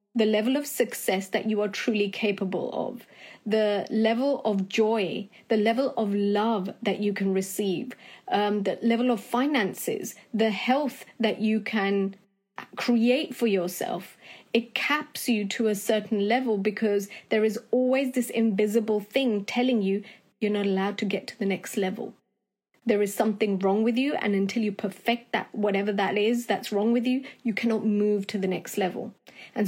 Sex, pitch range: female, 205-235 Hz